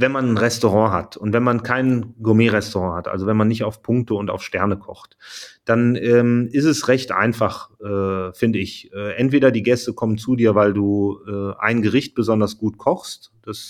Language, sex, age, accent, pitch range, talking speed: German, male, 30-49, German, 105-120 Hz, 200 wpm